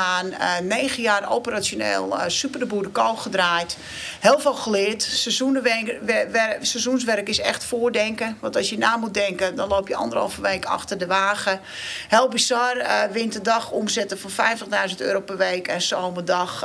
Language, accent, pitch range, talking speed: Dutch, Dutch, 190-240 Hz, 160 wpm